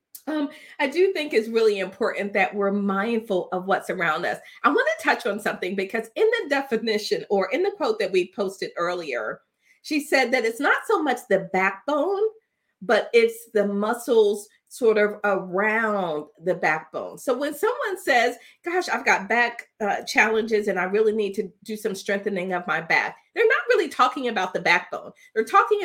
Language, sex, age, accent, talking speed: English, female, 40-59, American, 185 wpm